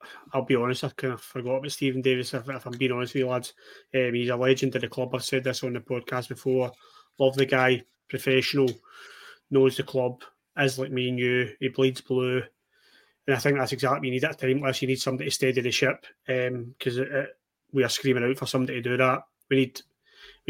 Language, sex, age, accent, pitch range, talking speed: English, male, 20-39, British, 125-135 Hz, 230 wpm